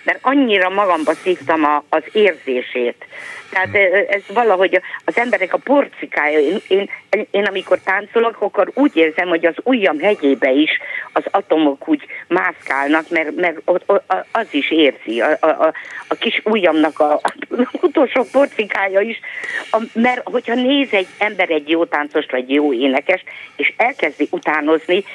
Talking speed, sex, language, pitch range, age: 145 wpm, female, Hungarian, 150-215 Hz, 50-69